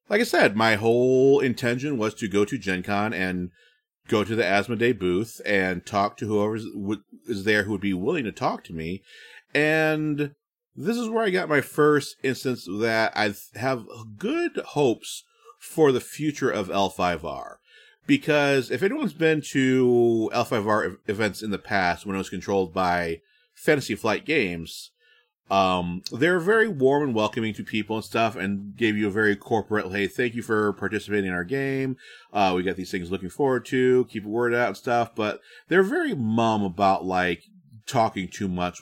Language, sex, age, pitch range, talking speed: English, male, 30-49, 100-135 Hz, 180 wpm